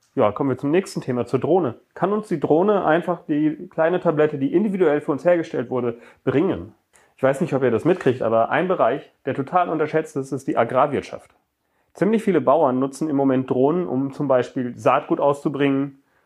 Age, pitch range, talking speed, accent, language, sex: 30-49, 130-160 Hz, 190 wpm, German, German, male